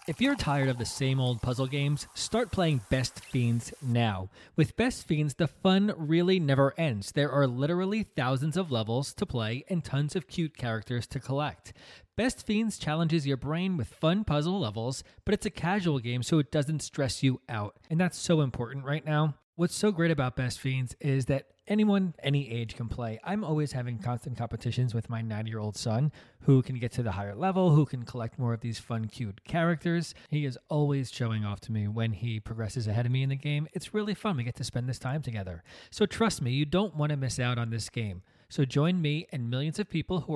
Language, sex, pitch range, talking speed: English, male, 120-160 Hz, 220 wpm